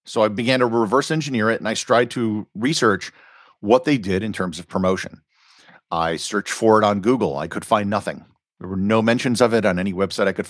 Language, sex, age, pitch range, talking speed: English, male, 50-69, 100-125 Hz, 230 wpm